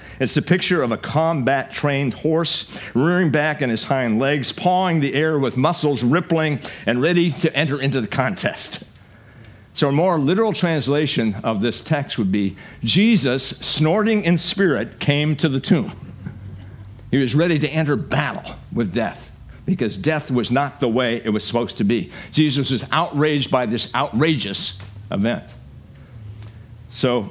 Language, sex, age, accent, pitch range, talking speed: English, male, 50-69, American, 110-150 Hz, 155 wpm